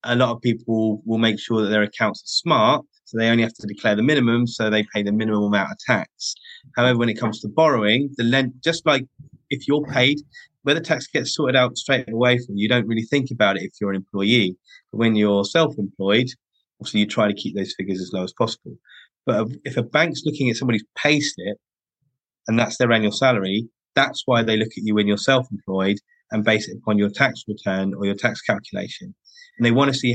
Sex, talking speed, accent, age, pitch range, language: male, 225 wpm, British, 20-39, 105-130 Hz, English